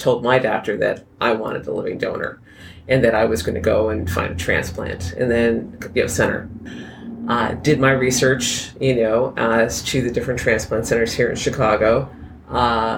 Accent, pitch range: American, 115-130 Hz